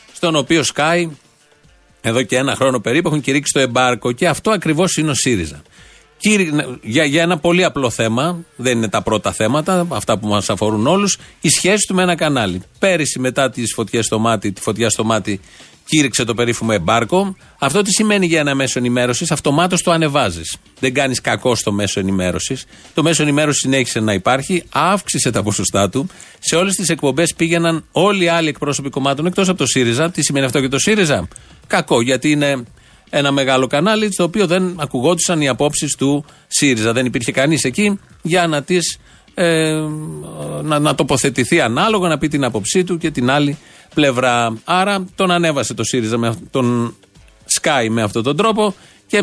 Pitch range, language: 125-175 Hz, Greek